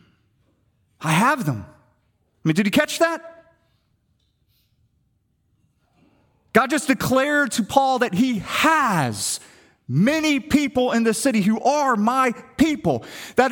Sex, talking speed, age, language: male, 120 wpm, 30-49, English